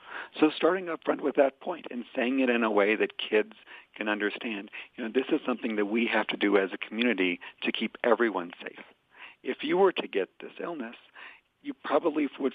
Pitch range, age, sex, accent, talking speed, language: 100-130 Hz, 50-69, male, American, 210 wpm, English